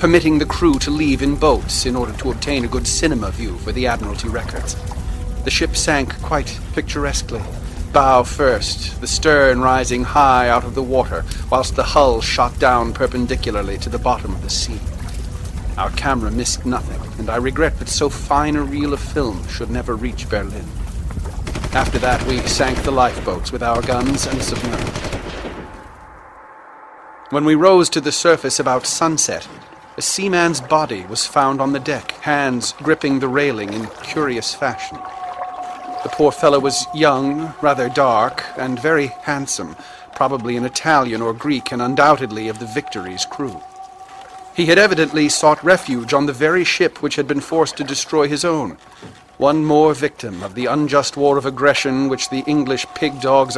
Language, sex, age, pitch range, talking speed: English, male, 40-59, 120-150 Hz, 165 wpm